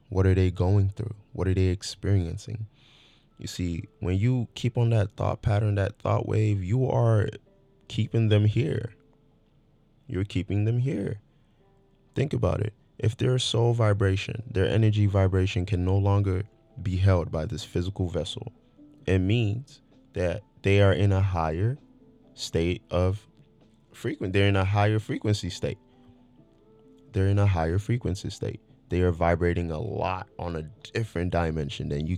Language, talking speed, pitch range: English, 155 wpm, 90-115 Hz